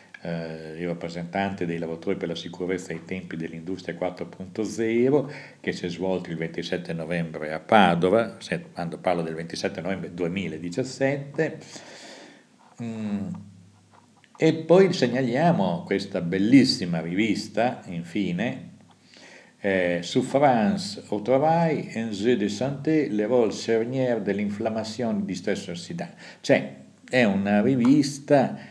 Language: Italian